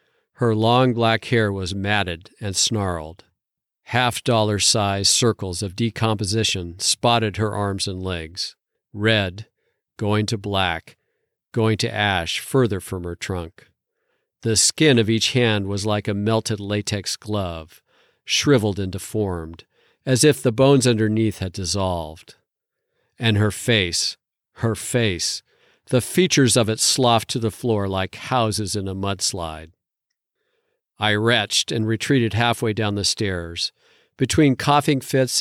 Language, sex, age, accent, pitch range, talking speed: English, male, 50-69, American, 100-120 Hz, 130 wpm